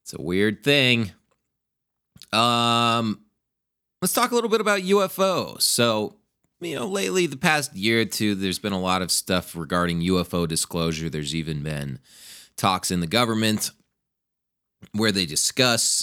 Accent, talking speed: American, 150 wpm